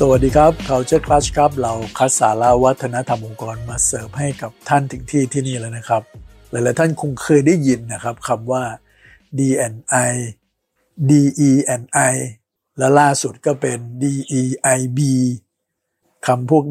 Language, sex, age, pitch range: Thai, male, 60-79, 120-140 Hz